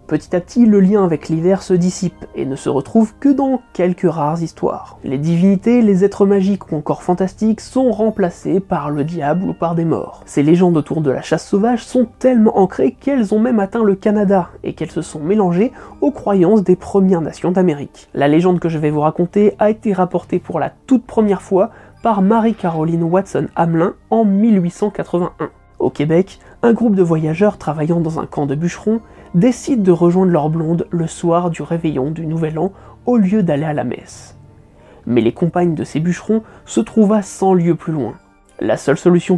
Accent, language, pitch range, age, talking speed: French, French, 160-205 Hz, 20-39, 195 wpm